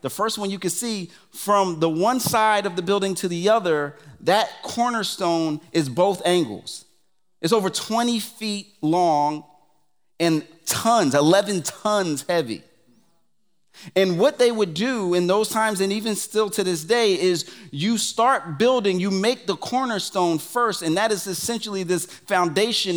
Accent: American